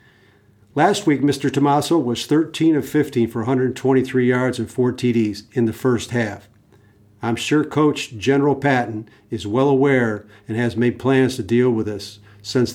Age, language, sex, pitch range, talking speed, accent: 50-69, English, male, 110-135 Hz, 165 wpm, American